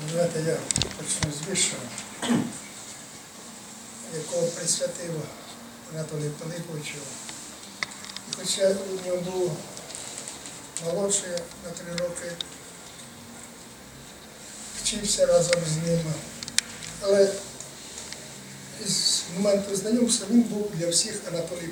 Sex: male